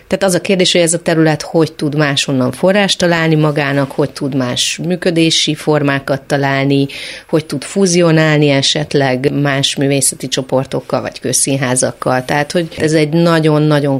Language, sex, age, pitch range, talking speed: Hungarian, female, 30-49, 140-170 Hz, 145 wpm